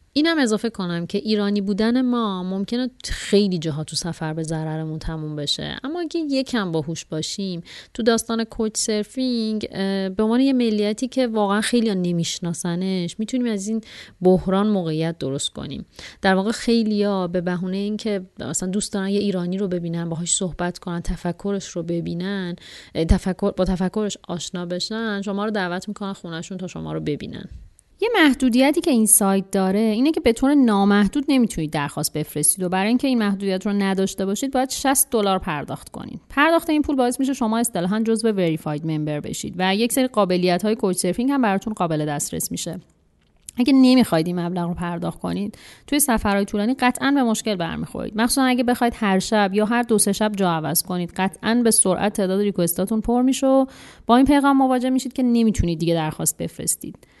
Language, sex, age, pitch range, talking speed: Persian, female, 30-49, 175-235 Hz, 175 wpm